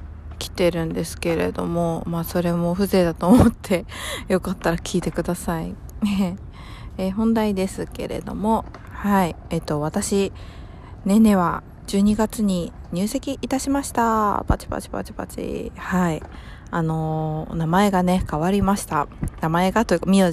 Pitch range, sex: 160-195 Hz, female